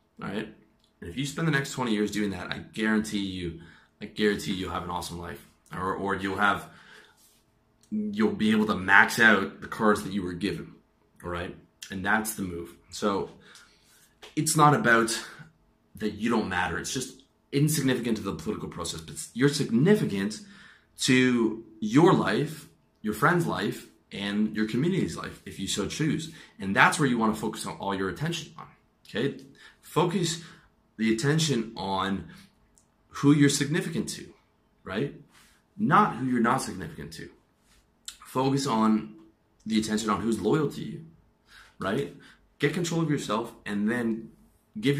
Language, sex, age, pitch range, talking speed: English, male, 20-39, 95-130 Hz, 160 wpm